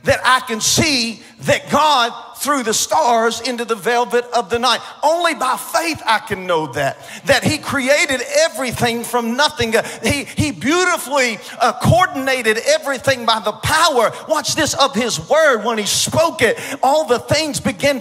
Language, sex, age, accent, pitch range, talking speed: English, male, 50-69, American, 235-280 Hz, 165 wpm